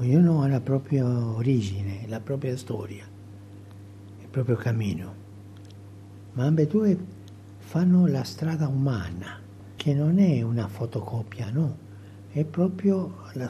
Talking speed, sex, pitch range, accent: 120 wpm, male, 100-150 Hz, native